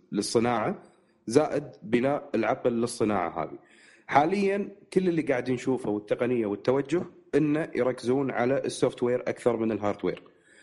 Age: 30-49